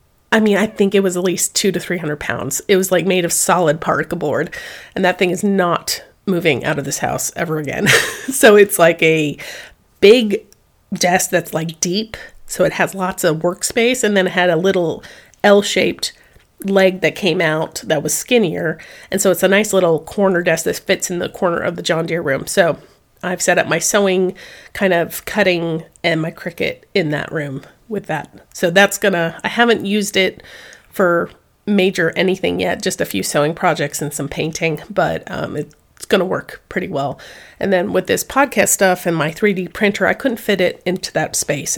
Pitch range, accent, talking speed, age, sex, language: 160-195 Hz, American, 200 wpm, 30-49, female, English